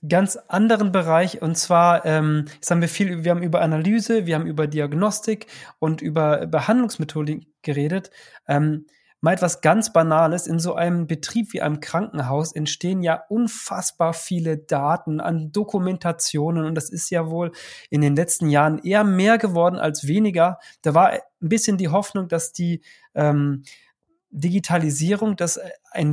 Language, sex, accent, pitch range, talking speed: German, male, German, 155-190 Hz, 155 wpm